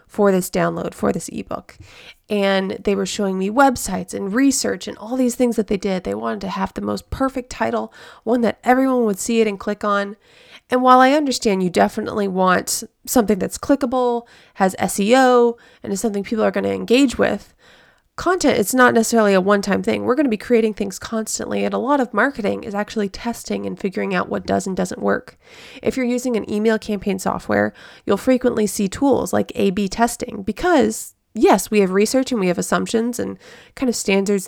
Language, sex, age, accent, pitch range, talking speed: English, female, 20-39, American, 195-245 Hz, 200 wpm